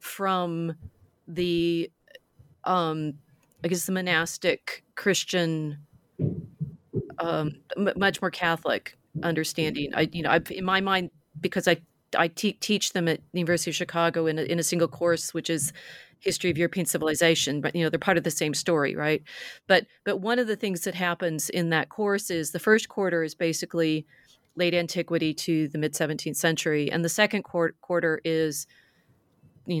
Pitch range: 160-180 Hz